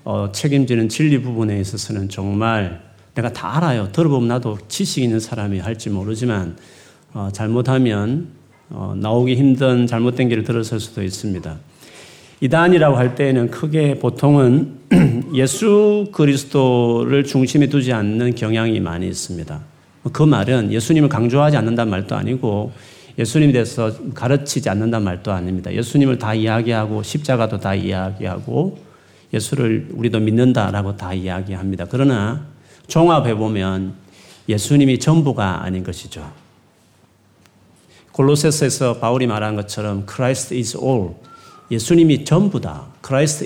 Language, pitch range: Korean, 105-140 Hz